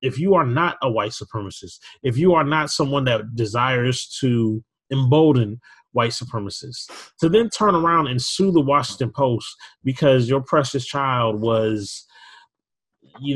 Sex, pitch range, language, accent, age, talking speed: male, 115-140 Hz, English, American, 30-49, 150 wpm